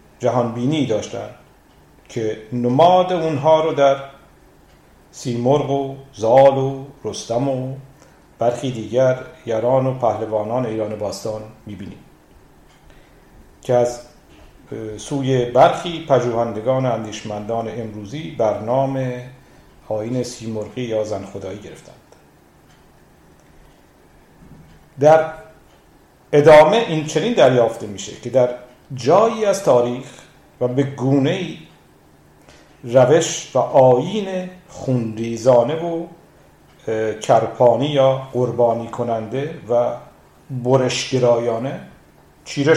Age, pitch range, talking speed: 50-69, 120-150 Hz, 85 wpm